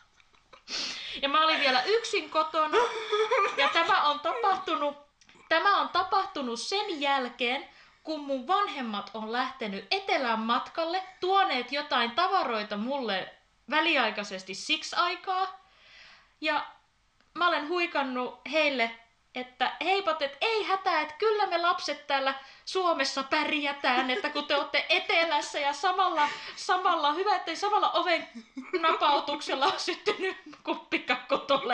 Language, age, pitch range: Finnish, 20-39, 260-365 Hz